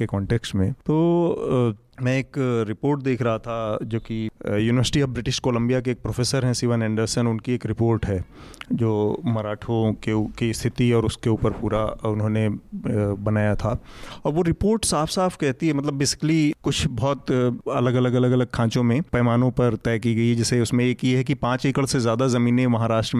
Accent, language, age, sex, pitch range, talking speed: native, Hindi, 30-49, male, 115-145 Hz, 190 wpm